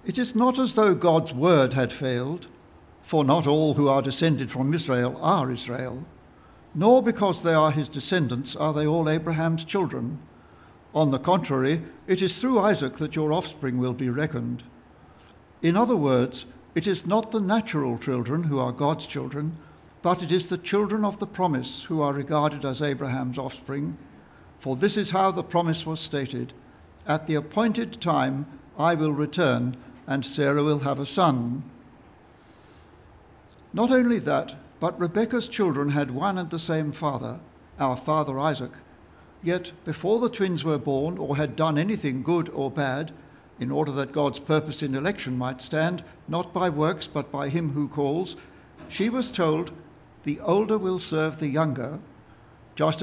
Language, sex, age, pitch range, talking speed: English, male, 60-79, 130-175 Hz, 165 wpm